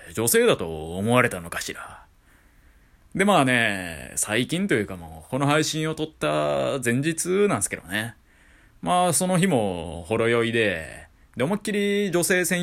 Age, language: 20-39, Japanese